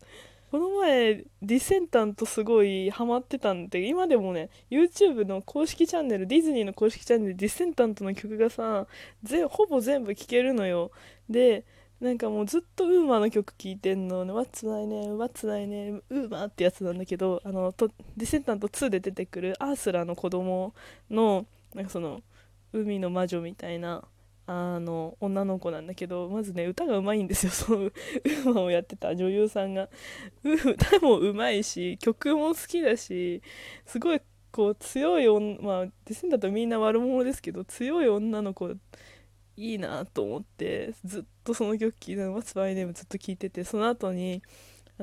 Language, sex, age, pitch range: Japanese, female, 20-39, 185-240 Hz